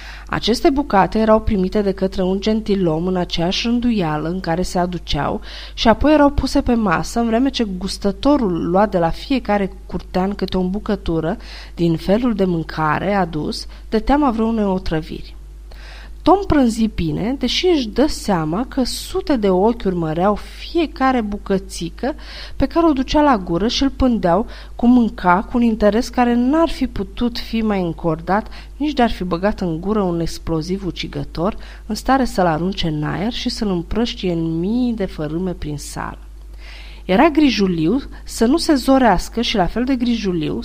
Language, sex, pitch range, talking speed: Romanian, female, 175-245 Hz, 165 wpm